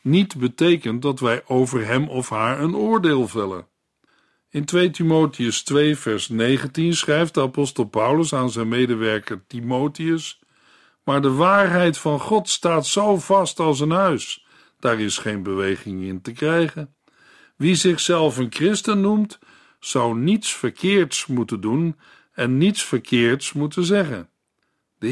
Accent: Dutch